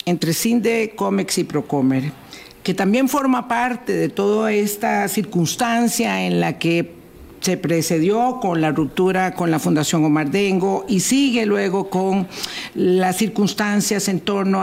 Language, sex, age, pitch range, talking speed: Spanish, female, 50-69, 175-220 Hz, 140 wpm